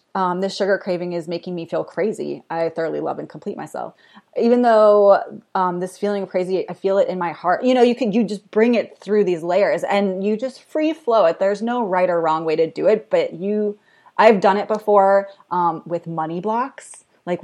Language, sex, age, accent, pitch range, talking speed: English, female, 30-49, American, 170-215 Hz, 225 wpm